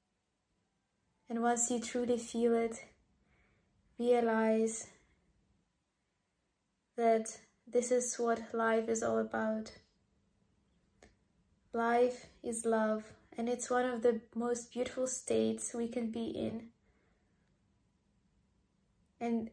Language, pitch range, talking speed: English, 225-240 Hz, 95 wpm